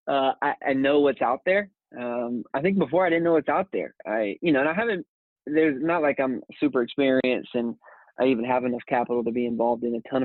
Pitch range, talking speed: 115-130 Hz, 240 wpm